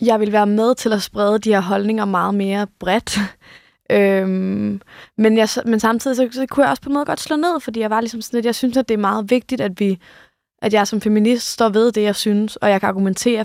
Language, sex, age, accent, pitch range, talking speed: Danish, female, 20-39, native, 190-225 Hz, 255 wpm